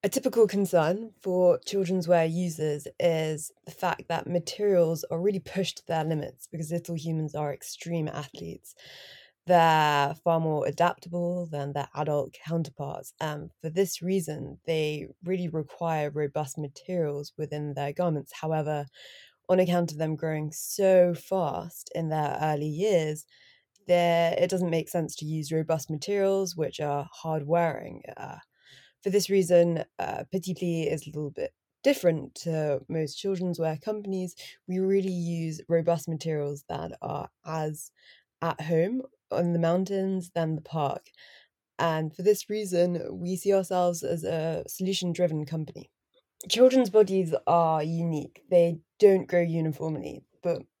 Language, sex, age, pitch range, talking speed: German, female, 20-39, 155-180 Hz, 140 wpm